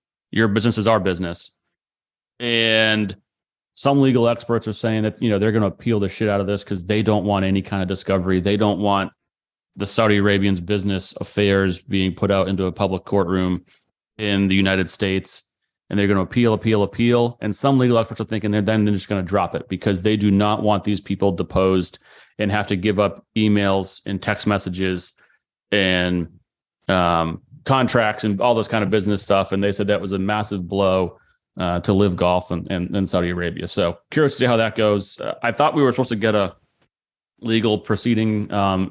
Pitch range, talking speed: 95-110 Hz, 205 wpm